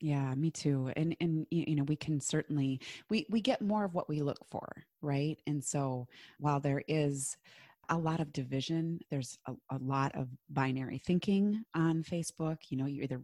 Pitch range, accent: 135-160 Hz, American